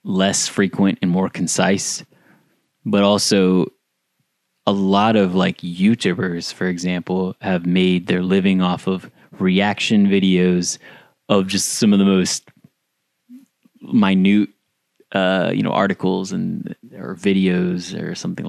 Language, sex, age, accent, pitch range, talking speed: English, male, 20-39, American, 90-105 Hz, 125 wpm